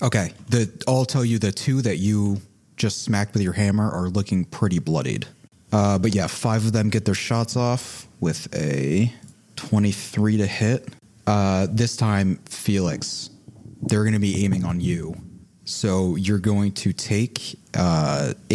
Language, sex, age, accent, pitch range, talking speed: English, male, 30-49, American, 95-115 Hz, 160 wpm